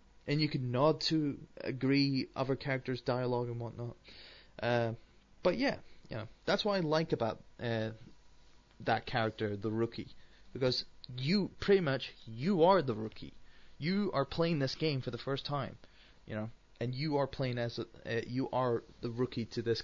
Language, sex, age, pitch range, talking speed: English, male, 20-39, 115-140 Hz, 175 wpm